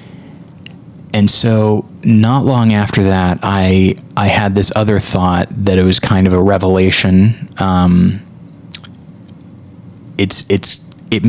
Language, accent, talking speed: English, American, 120 wpm